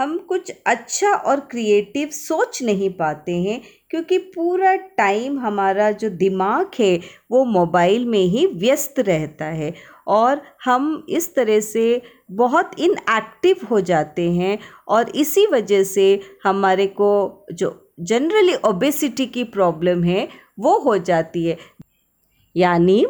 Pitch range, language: 195-290 Hz, Hindi